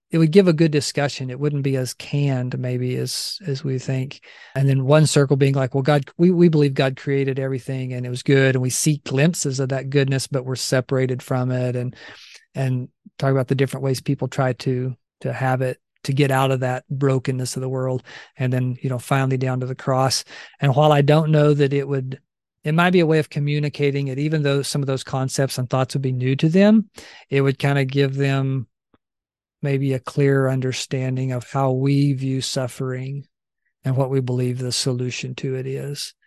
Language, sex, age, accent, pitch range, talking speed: English, male, 40-59, American, 130-145 Hz, 215 wpm